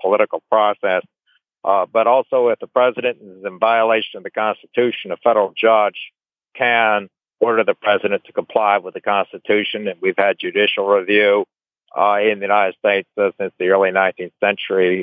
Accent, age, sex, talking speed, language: American, 60-79, male, 170 wpm, English